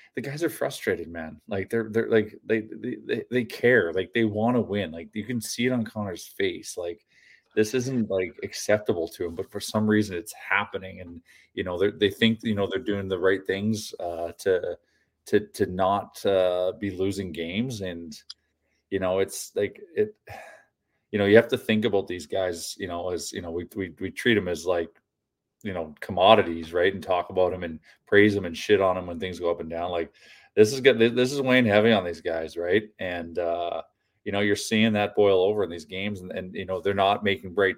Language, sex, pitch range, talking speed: English, male, 95-115 Hz, 225 wpm